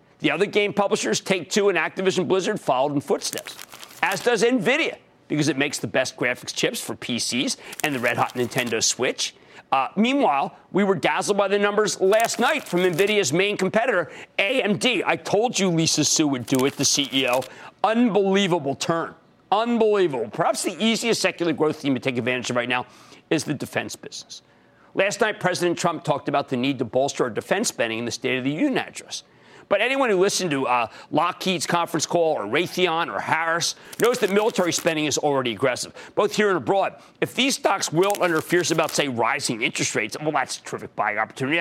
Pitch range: 145-205 Hz